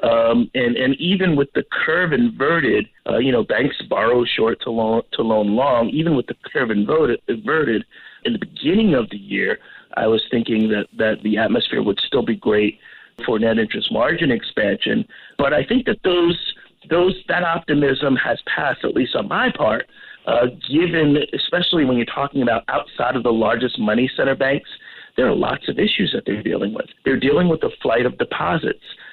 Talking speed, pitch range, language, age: 185 wpm, 115-150 Hz, English, 50-69